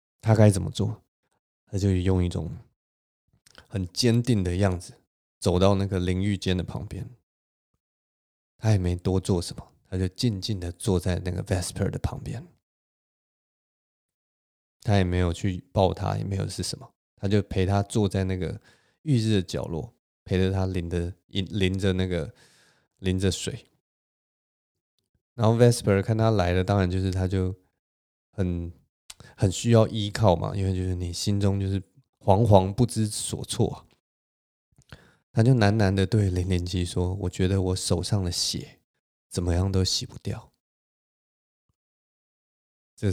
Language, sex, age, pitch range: Chinese, male, 20-39, 90-105 Hz